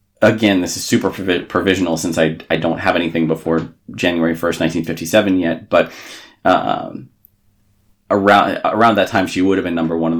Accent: American